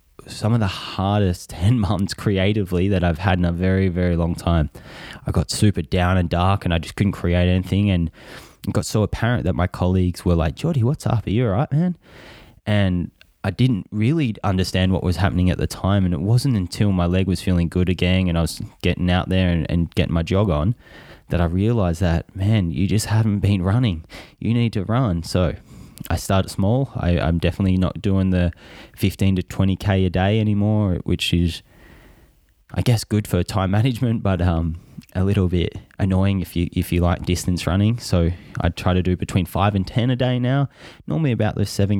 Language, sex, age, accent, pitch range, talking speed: English, male, 20-39, Australian, 90-105 Hz, 205 wpm